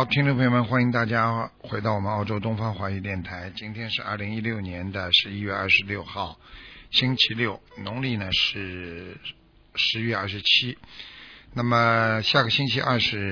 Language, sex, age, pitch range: Chinese, male, 50-69, 100-125 Hz